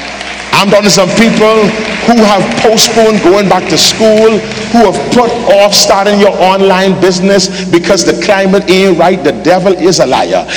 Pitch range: 175-220 Hz